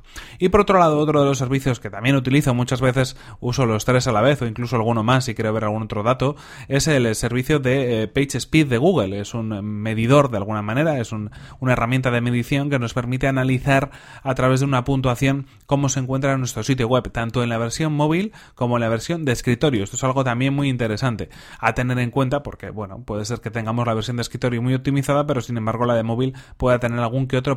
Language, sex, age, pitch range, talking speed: Spanish, male, 30-49, 115-135 Hz, 235 wpm